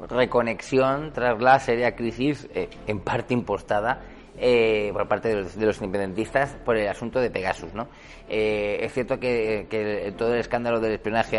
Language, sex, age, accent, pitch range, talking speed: Spanish, male, 30-49, Spanish, 105-125 Hz, 180 wpm